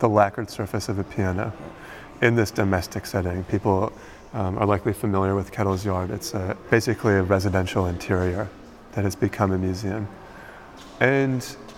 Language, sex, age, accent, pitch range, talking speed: English, male, 30-49, American, 100-120 Hz, 150 wpm